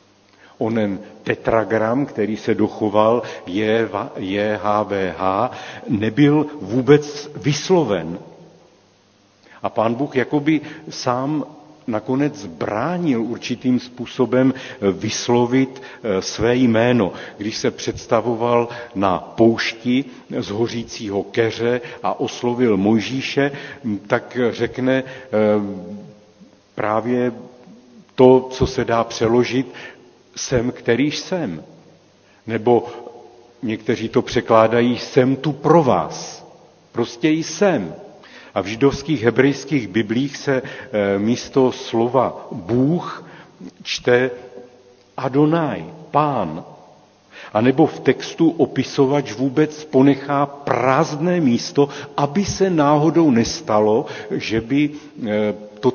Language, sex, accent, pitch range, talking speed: Czech, male, native, 110-140 Hz, 90 wpm